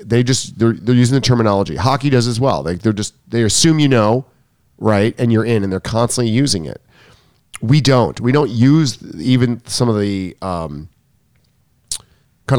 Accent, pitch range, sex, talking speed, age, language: American, 110-145 Hz, male, 180 wpm, 40-59, English